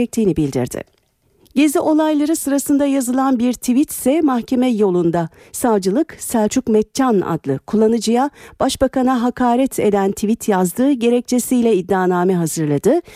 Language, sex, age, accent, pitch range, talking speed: Turkish, female, 50-69, native, 175-245 Hz, 105 wpm